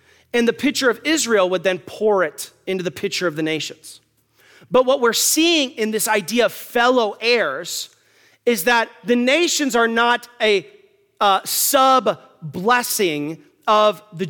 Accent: American